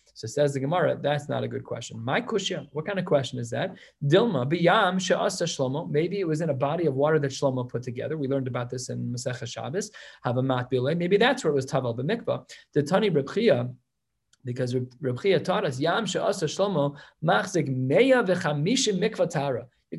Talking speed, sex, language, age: 190 wpm, male, English, 30-49